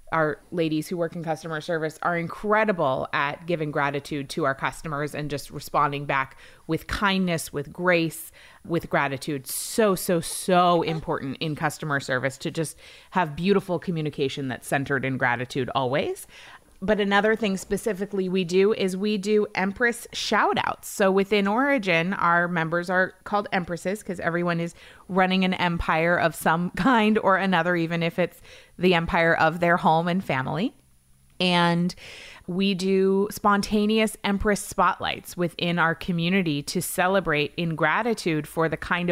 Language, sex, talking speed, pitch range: English, female, 150 wpm, 155-190 Hz